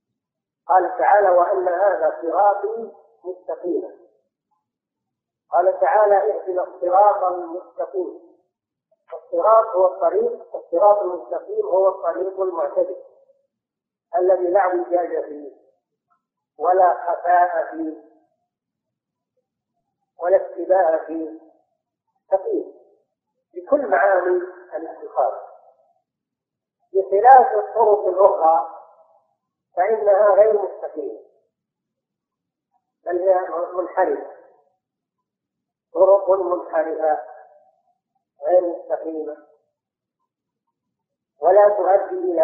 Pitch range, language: 175-255 Hz, Arabic